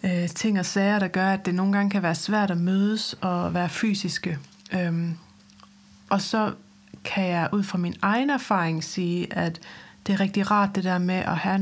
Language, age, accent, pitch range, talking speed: Danish, 30-49, native, 165-200 Hz, 195 wpm